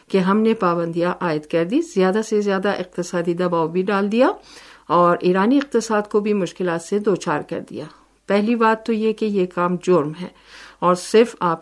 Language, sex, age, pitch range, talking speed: Urdu, female, 50-69, 175-220 Hz, 185 wpm